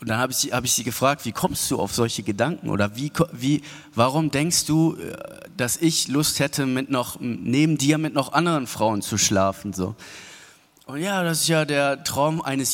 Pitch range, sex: 110-145 Hz, male